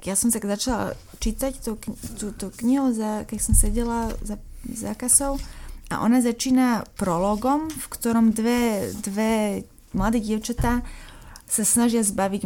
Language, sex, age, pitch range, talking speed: Slovak, female, 20-39, 205-235 Hz, 140 wpm